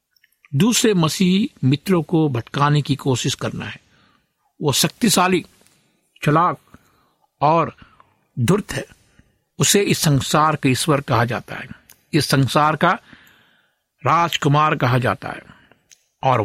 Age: 60-79